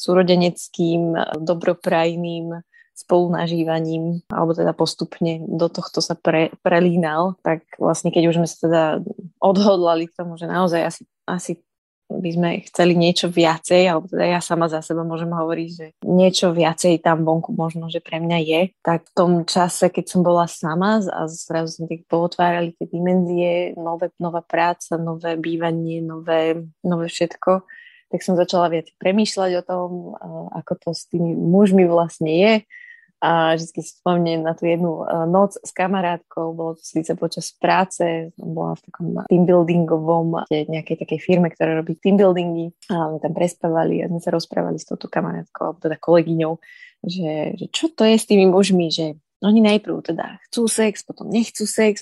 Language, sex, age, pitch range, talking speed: Slovak, female, 20-39, 165-185 Hz, 160 wpm